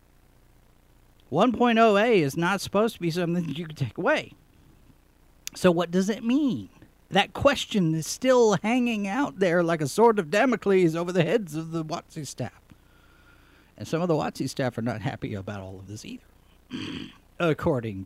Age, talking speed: 40-59, 170 wpm